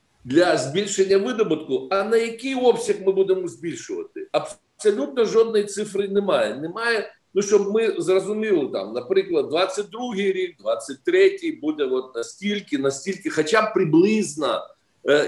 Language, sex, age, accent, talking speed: Ukrainian, male, 50-69, native, 120 wpm